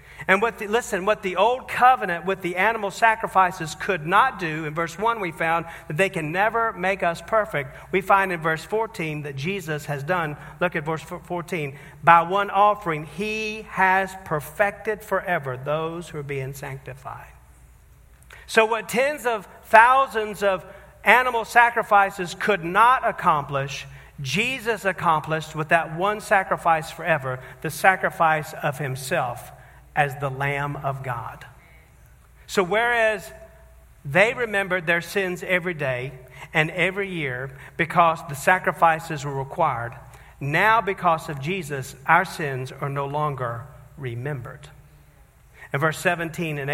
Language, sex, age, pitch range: English, male, 50-69, 145-190 Hz